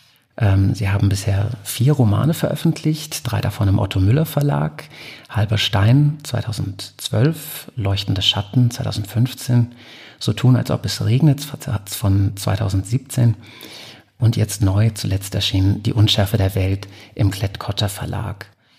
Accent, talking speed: German, 115 wpm